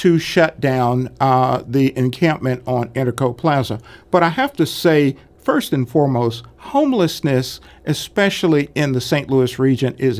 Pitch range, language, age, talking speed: 125-165 Hz, English, 50-69, 145 wpm